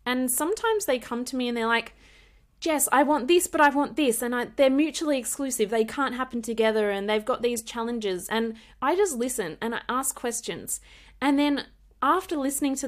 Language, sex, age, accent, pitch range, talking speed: English, female, 20-39, Australian, 205-260 Hz, 200 wpm